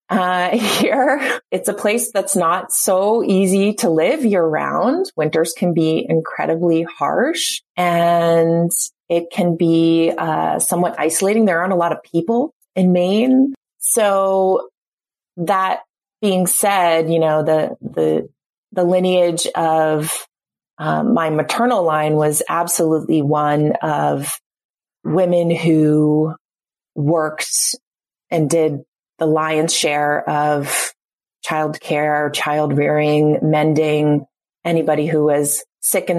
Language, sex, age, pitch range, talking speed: English, female, 30-49, 150-180 Hz, 120 wpm